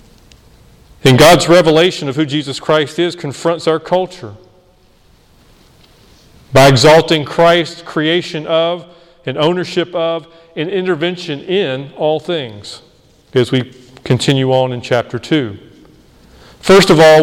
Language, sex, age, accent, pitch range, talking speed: English, male, 40-59, American, 130-160 Hz, 120 wpm